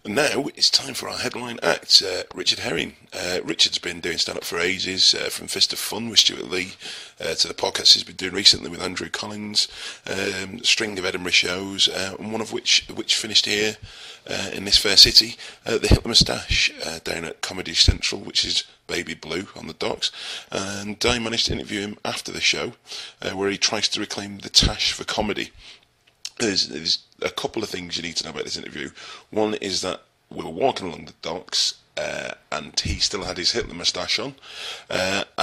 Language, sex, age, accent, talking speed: English, male, 30-49, British, 210 wpm